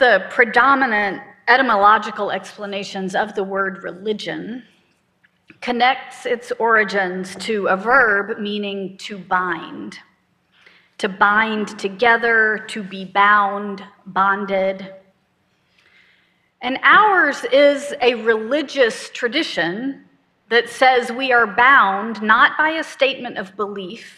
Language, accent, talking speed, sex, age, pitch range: English, American, 100 wpm, female, 40-59, 200-260 Hz